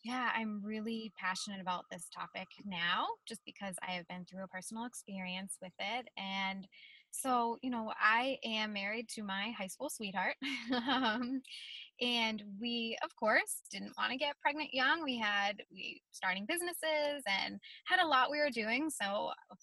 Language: English